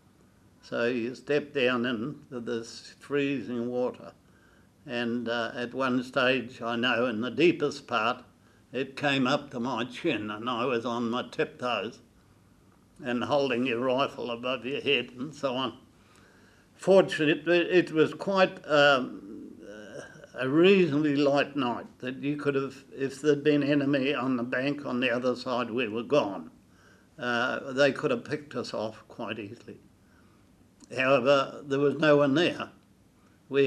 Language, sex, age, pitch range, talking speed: English, male, 60-79, 120-145 Hz, 150 wpm